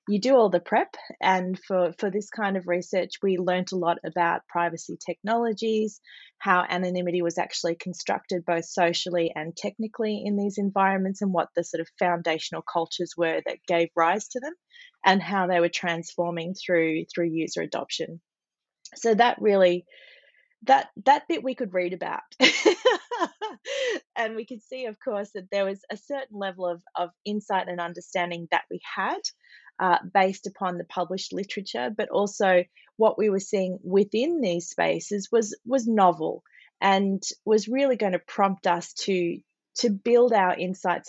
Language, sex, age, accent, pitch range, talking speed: English, female, 20-39, Australian, 175-210 Hz, 165 wpm